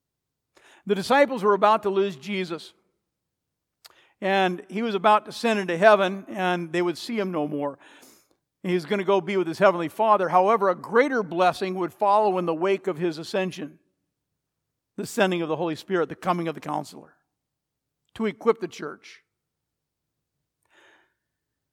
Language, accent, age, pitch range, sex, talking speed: English, American, 60-79, 155-200 Hz, male, 165 wpm